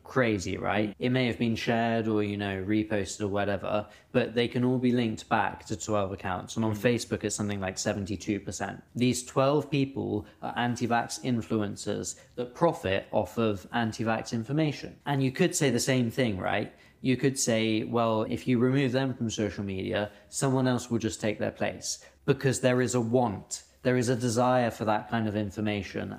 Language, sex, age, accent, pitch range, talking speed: English, male, 20-39, British, 105-125 Hz, 190 wpm